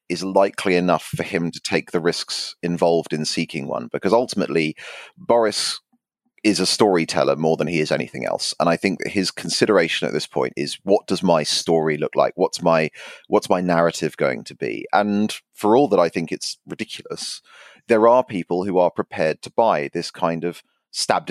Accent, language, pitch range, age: British, English, 80-105 Hz, 30-49